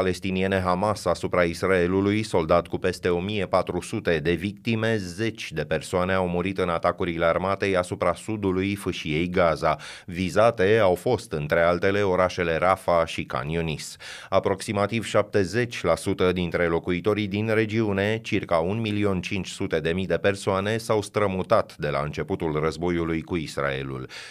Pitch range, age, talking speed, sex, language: 90-120 Hz, 30-49, 120 wpm, male, Romanian